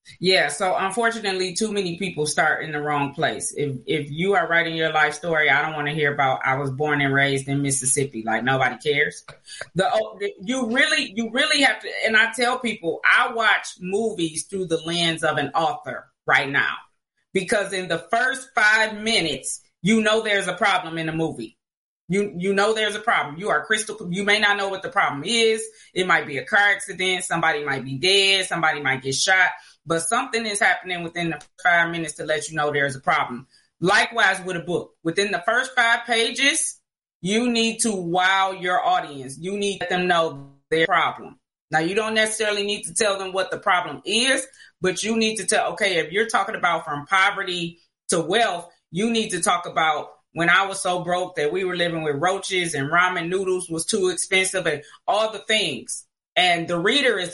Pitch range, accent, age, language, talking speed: 160-215 Hz, American, 30-49, English, 205 wpm